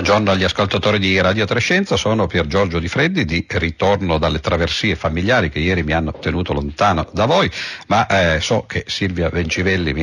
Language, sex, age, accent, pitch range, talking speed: Italian, male, 50-69, native, 85-110 Hz, 185 wpm